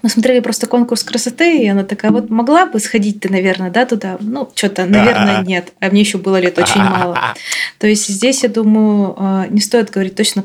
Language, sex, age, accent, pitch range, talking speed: Russian, female, 20-39, native, 180-220 Hz, 205 wpm